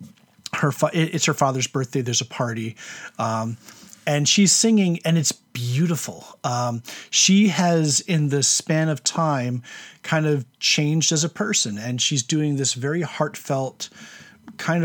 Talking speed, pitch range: 150 wpm, 125-155 Hz